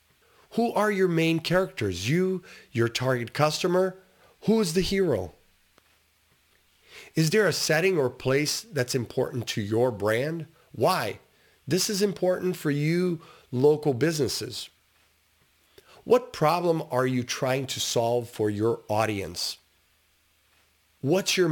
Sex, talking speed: male, 125 wpm